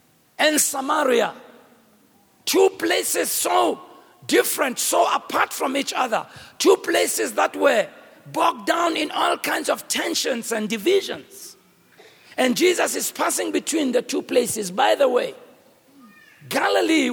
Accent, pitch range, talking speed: South African, 245-305 Hz, 125 wpm